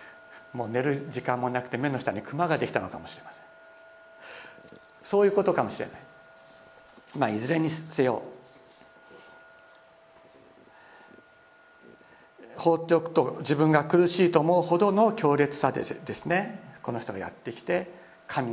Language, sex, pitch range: Japanese, male, 125-160 Hz